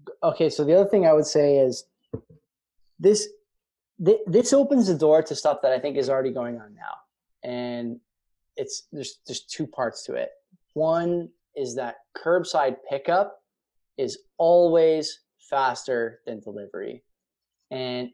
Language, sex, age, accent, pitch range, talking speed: English, male, 20-39, American, 125-165 Hz, 145 wpm